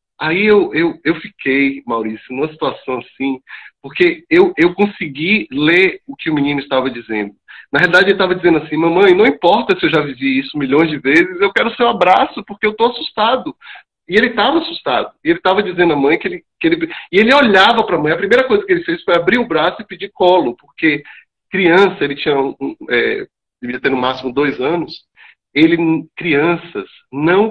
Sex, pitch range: male, 145-225 Hz